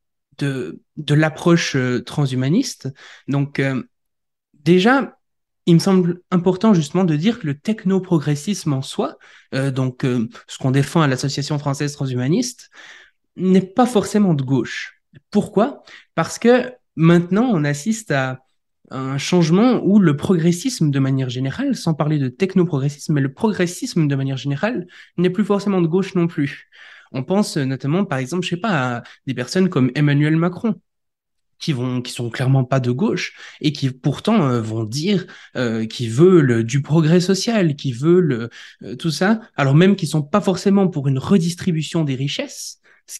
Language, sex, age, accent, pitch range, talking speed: French, male, 20-39, French, 140-195 Hz, 165 wpm